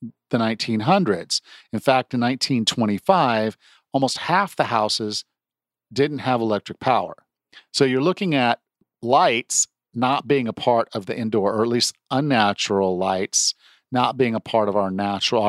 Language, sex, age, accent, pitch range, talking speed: English, male, 50-69, American, 110-130 Hz, 145 wpm